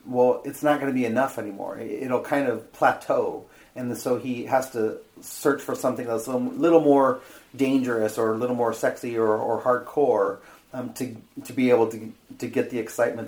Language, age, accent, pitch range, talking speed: English, 30-49, American, 115-135 Hz, 195 wpm